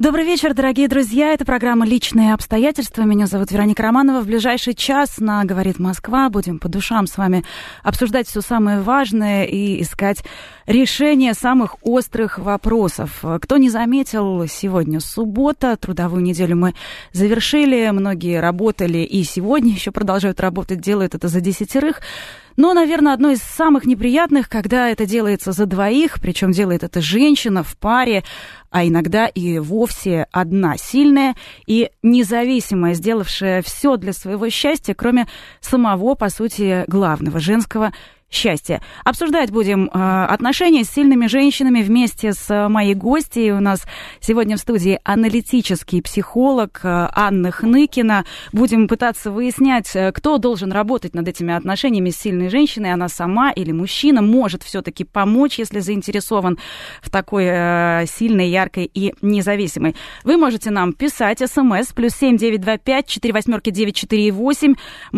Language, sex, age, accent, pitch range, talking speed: Russian, female, 20-39, native, 190-250 Hz, 135 wpm